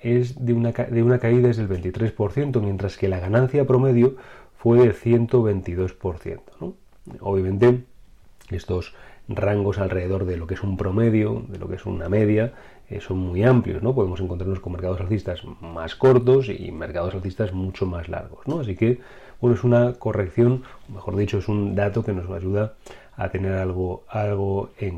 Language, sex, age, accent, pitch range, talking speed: Spanish, male, 30-49, Spanish, 95-120 Hz, 175 wpm